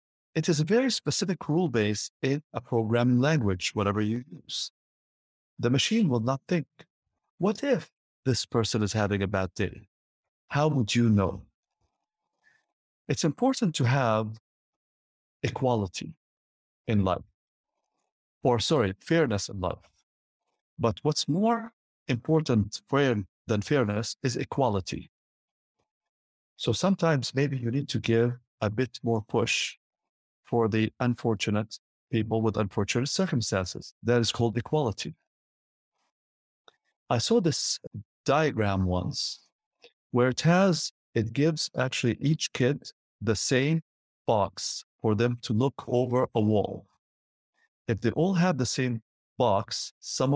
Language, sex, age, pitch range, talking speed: English, male, 50-69, 105-145 Hz, 125 wpm